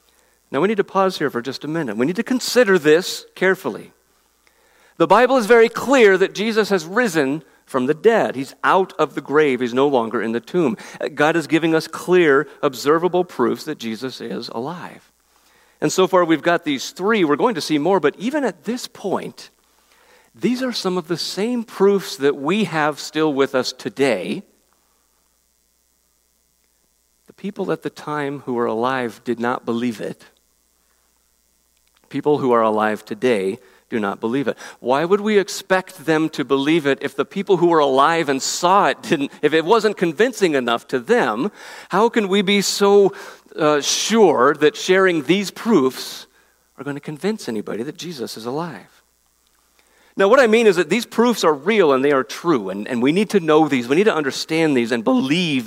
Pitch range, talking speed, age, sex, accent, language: 130-195 Hz, 190 wpm, 50-69, male, American, English